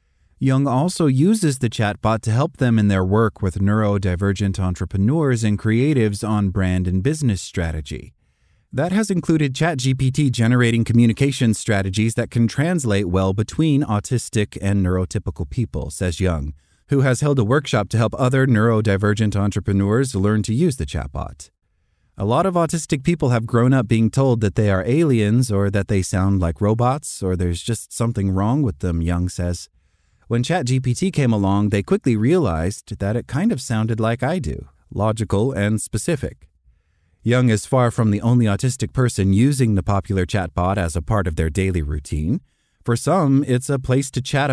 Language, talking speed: English, 170 wpm